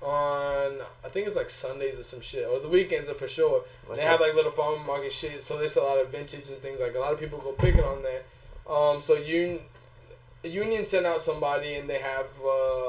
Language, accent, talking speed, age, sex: English, American, 240 wpm, 20-39, male